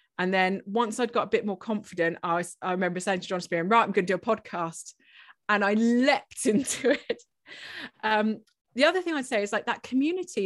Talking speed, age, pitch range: 220 wpm, 30-49, 190-240 Hz